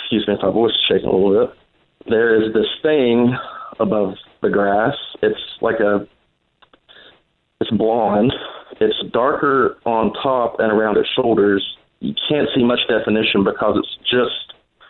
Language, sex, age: English, male, 40-59